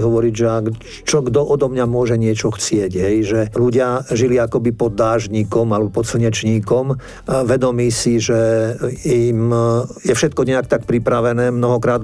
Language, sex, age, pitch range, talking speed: Slovak, male, 50-69, 110-120 Hz, 150 wpm